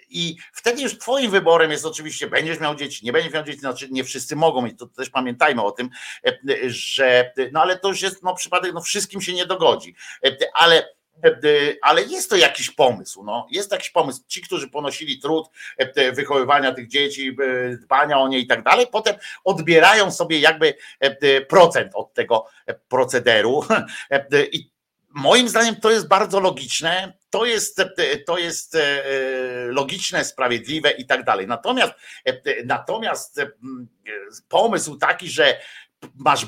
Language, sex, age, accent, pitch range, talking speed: Polish, male, 50-69, native, 130-195 Hz, 145 wpm